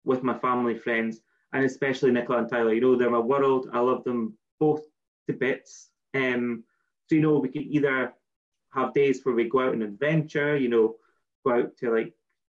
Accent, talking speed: British, 195 wpm